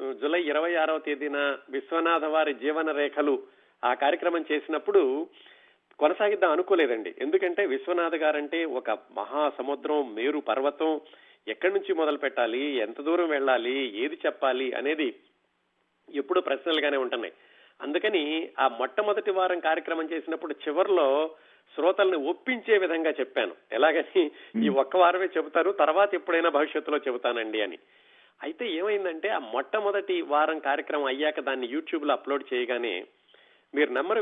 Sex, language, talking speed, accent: male, Telugu, 120 wpm, native